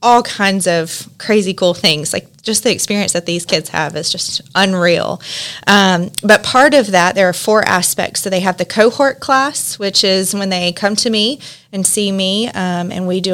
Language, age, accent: English, 20-39, American